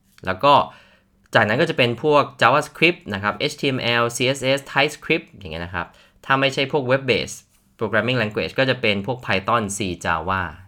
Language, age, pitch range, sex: Thai, 20-39, 100-135 Hz, male